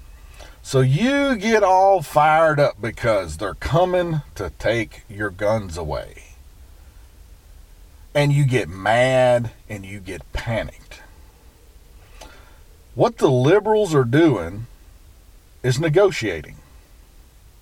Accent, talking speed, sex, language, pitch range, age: American, 100 wpm, male, English, 90-145 Hz, 40-59